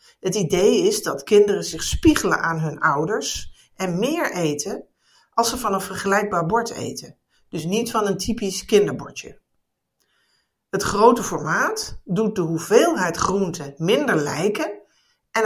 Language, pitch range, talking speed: Dutch, 180-230 Hz, 140 wpm